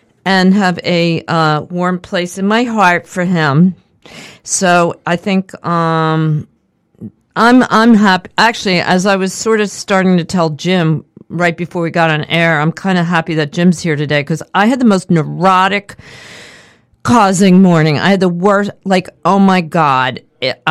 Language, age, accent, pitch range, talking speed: English, 50-69, American, 150-195 Hz, 170 wpm